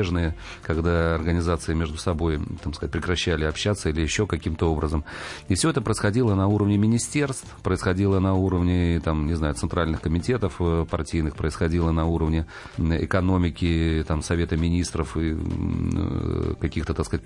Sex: male